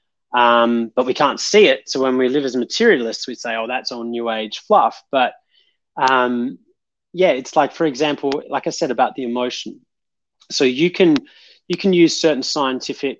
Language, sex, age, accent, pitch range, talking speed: English, male, 30-49, Australian, 115-140 Hz, 185 wpm